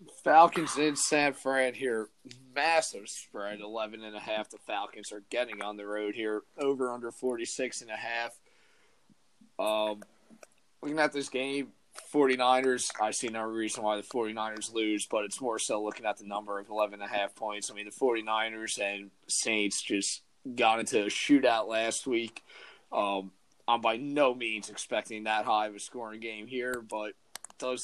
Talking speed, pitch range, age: 155 wpm, 105-130 Hz, 20-39